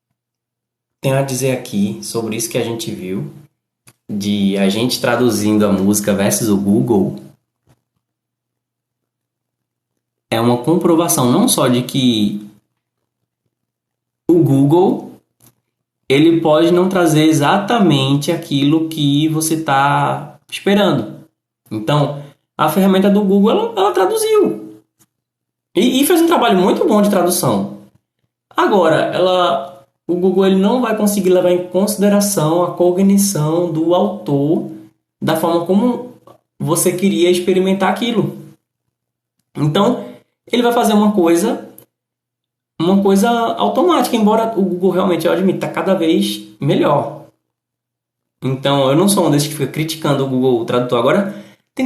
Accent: Brazilian